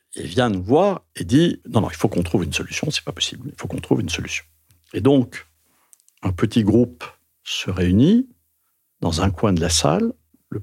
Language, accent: French, French